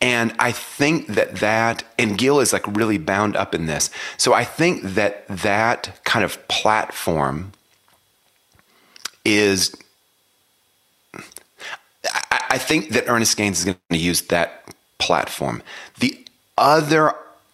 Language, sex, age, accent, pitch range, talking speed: English, male, 30-49, American, 85-105 Hz, 125 wpm